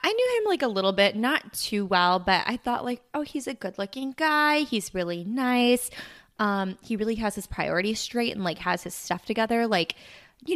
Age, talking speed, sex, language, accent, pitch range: 20-39, 215 wpm, female, English, American, 185-250 Hz